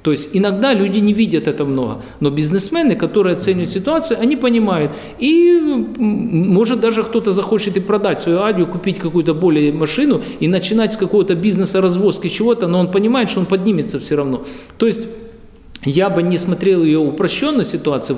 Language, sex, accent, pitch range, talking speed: Russian, male, native, 135-185 Hz, 165 wpm